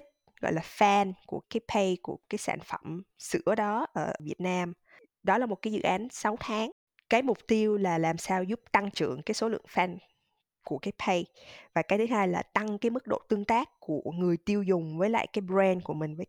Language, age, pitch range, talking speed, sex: Vietnamese, 20-39, 170-215 Hz, 225 wpm, female